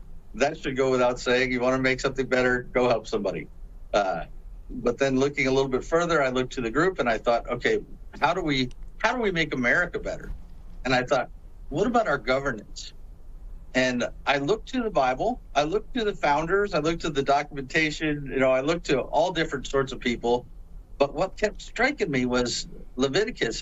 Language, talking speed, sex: English, 205 wpm, male